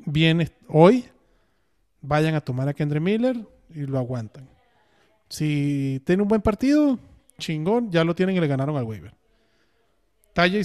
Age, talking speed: 30-49, 145 wpm